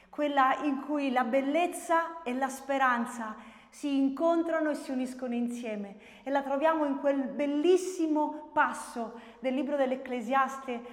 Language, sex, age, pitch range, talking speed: Italian, female, 30-49, 230-285 Hz, 130 wpm